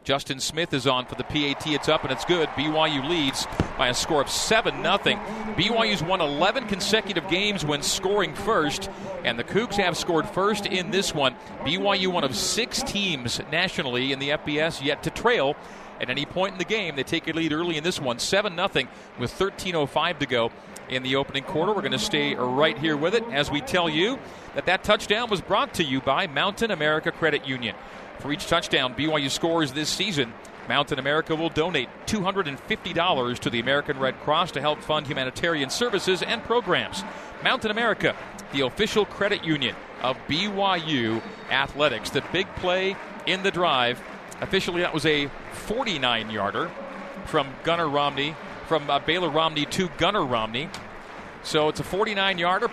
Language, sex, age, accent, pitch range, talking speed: English, male, 40-59, American, 145-195 Hz, 175 wpm